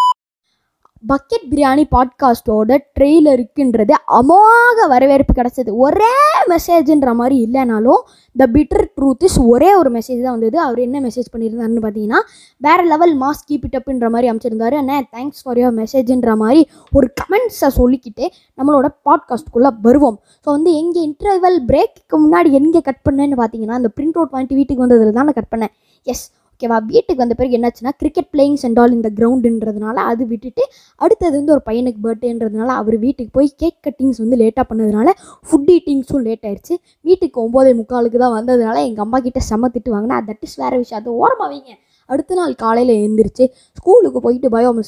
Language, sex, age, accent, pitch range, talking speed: Tamil, female, 20-39, native, 235-305 Hz, 160 wpm